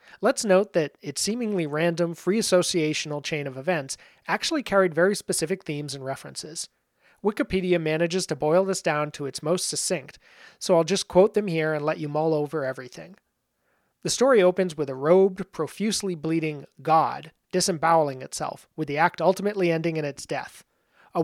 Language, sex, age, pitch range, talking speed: English, male, 30-49, 150-180 Hz, 165 wpm